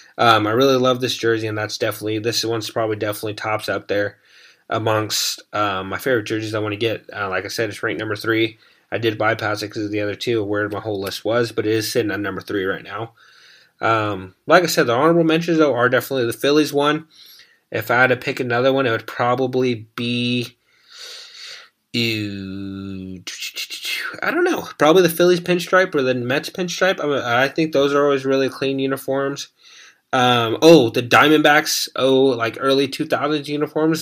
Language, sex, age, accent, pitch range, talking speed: English, male, 20-39, American, 110-135 Hz, 190 wpm